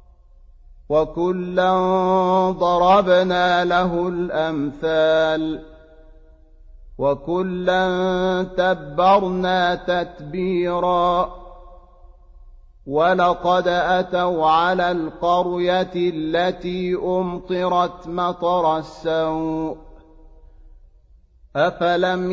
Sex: male